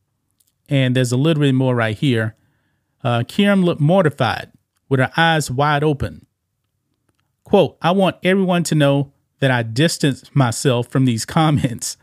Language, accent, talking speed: English, American, 150 wpm